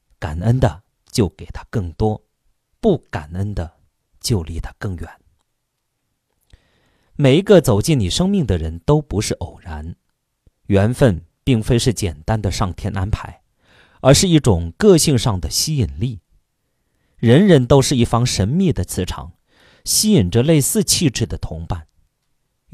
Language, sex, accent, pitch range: Chinese, male, native, 95-135 Hz